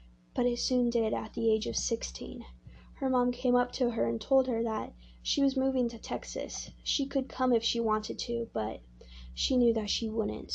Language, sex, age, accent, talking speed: English, female, 20-39, American, 210 wpm